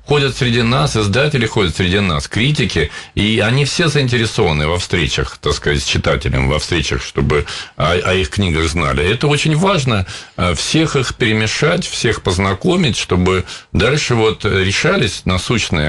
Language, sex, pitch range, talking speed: Russian, male, 85-115 Hz, 145 wpm